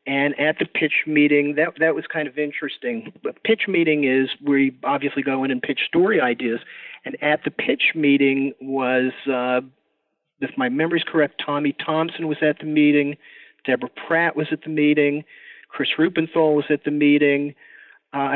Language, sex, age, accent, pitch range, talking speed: English, male, 40-59, American, 140-160 Hz, 175 wpm